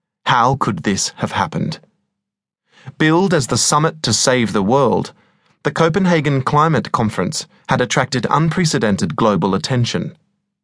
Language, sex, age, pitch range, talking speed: English, male, 30-49, 125-160 Hz, 125 wpm